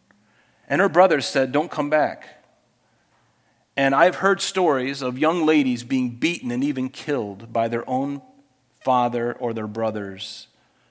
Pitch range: 115-135 Hz